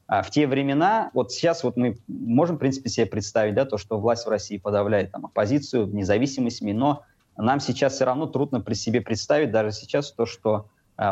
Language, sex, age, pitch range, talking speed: Russian, male, 20-39, 105-125 Hz, 195 wpm